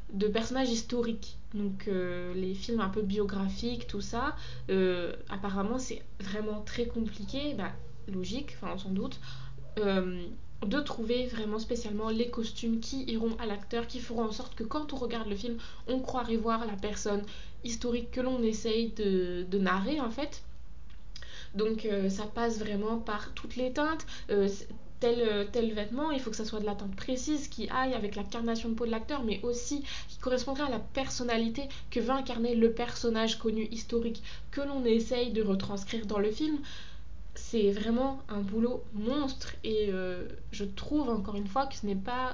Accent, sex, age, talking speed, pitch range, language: French, female, 20-39, 180 wpm, 205-240 Hz, French